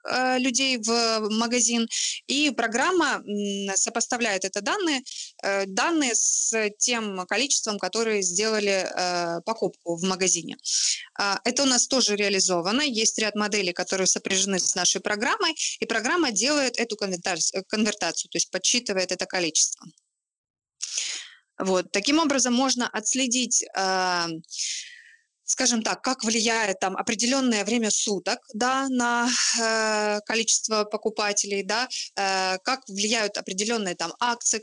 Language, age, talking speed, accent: Ukrainian, 20-39, 115 wpm, native